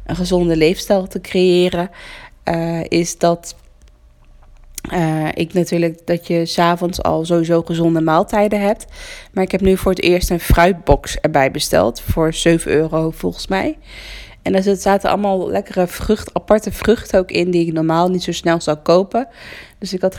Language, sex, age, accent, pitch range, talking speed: Dutch, female, 20-39, Dutch, 170-195 Hz, 165 wpm